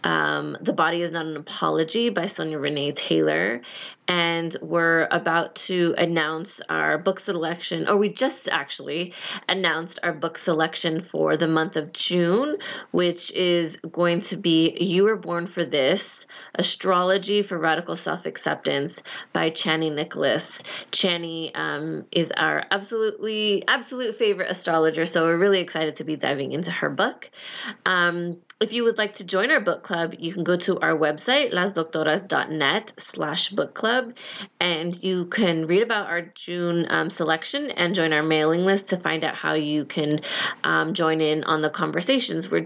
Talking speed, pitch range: 160 wpm, 160-195 Hz